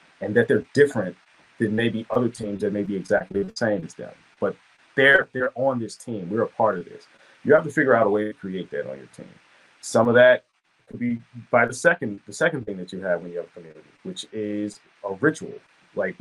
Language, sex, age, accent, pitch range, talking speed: English, male, 30-49, American, 105-130 Hz, 235 wpm